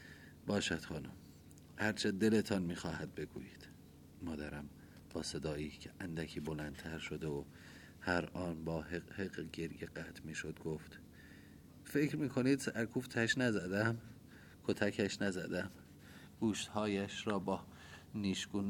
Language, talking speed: Persian, 105 wpm